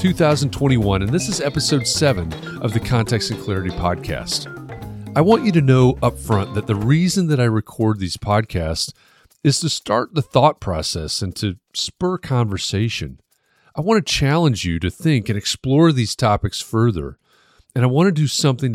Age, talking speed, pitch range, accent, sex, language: 40-59, 175 wpm, 95-130 Hz, American, male, English